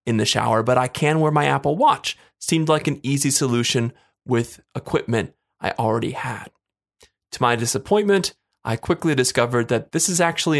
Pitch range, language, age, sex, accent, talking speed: 125-165 Hz, English, 20-39, male, American, 170 wpm